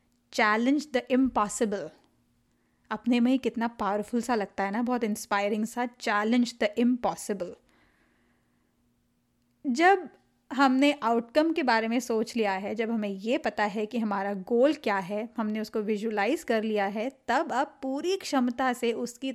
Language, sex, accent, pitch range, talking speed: Hindi, female, native, 215-270 Hz, 150 wpm